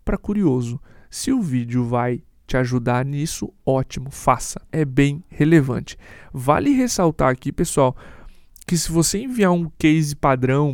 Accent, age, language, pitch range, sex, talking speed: Brazilian, 20-39, Portuguese, 130-160 Hz, male, 140 wpm